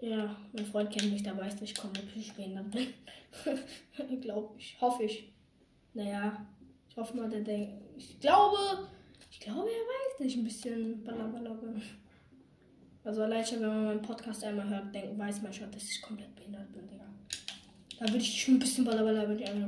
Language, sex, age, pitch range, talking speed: English, female, 10-29, 210-285 Hz, 190 wpm